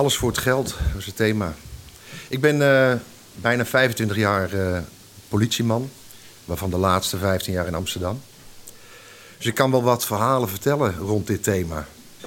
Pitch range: 95-125 Hz